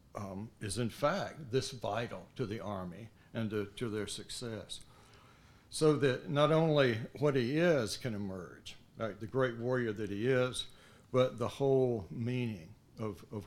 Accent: American